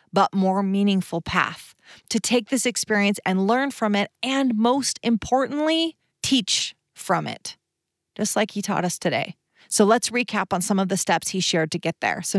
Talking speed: 185 wpm